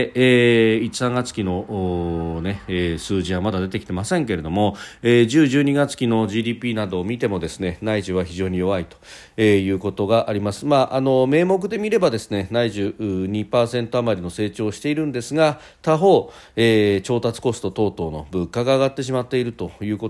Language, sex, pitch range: Japanese, male, 90-125 Hz